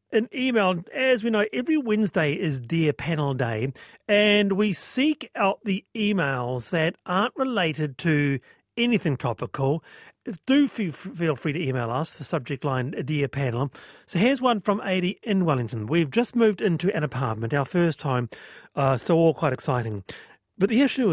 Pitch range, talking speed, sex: 145-200 Hz, 165 wpm, male